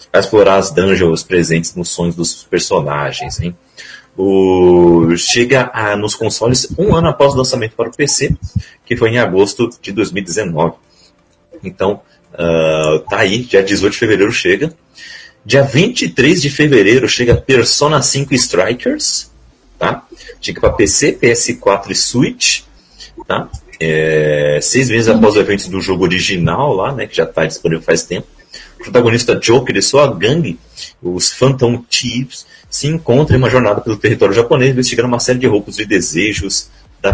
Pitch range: 95-140 Hz